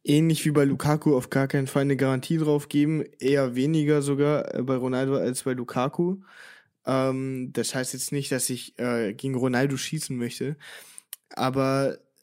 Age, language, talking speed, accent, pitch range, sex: 10-29, German, 160 wpm, German, 130-150 Hz, male